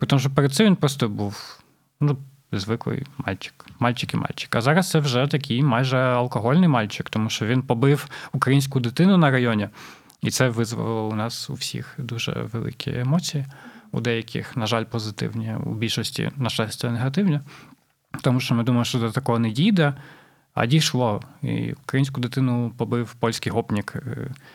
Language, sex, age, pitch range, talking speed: Ukrainian, male, 20-39, 115-145 Hz, 165 wpm